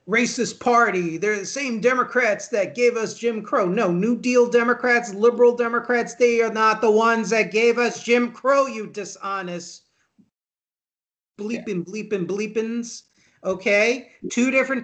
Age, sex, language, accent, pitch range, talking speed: 40-59, male, English, American, 170-235 Hz, 140 wpm